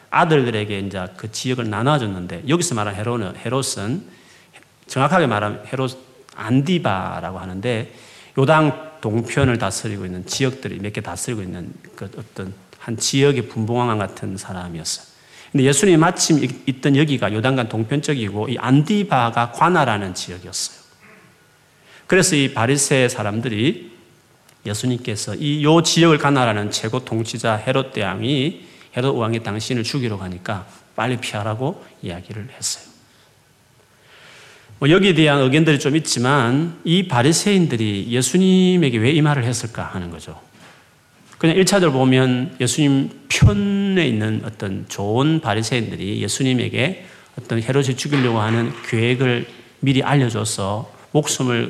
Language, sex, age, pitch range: Korean, male, 40-59, 105-140 Hz